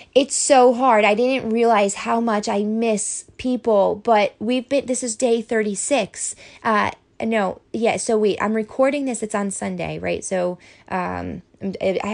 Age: 20-39